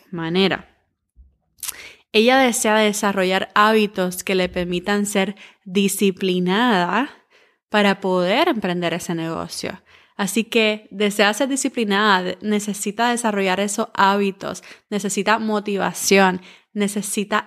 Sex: female